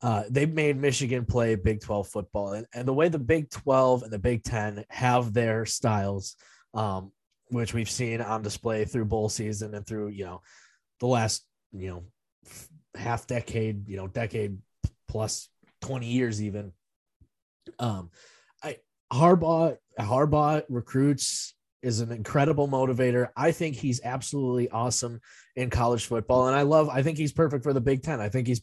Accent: American